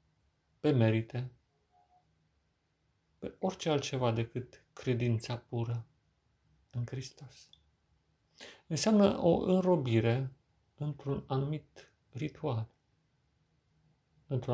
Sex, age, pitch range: male, 40-59, 115-150 Hz